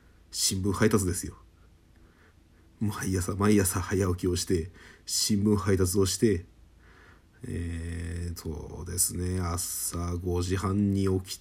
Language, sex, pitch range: Japanese, male, 85-100 Hz